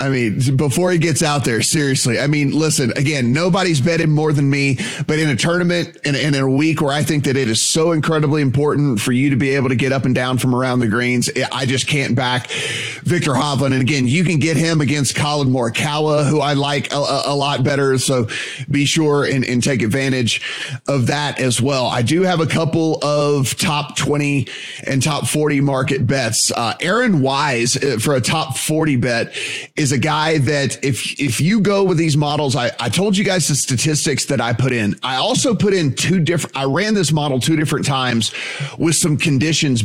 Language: English